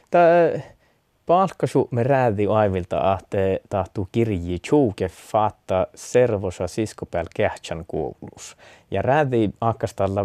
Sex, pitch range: male, 95-130 Hz